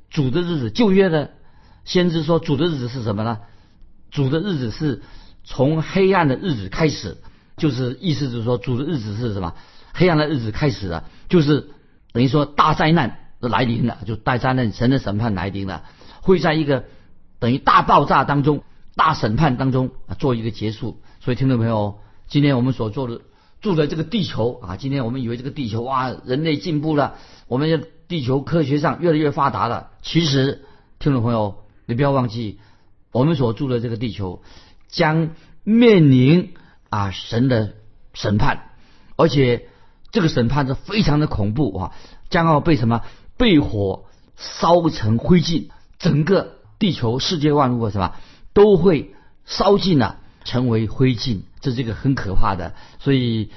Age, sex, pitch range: 50-69, male, 110-155 Hz